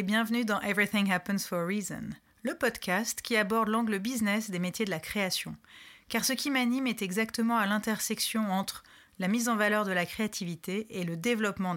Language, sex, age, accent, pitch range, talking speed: French, female, 30-49, French, 180-235 Hz, 195 wpm